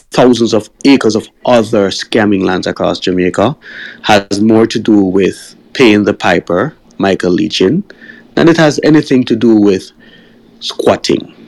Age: 30-49